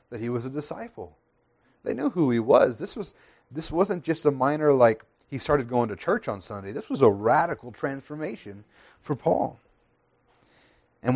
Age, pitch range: 30-49, 120-155 Hz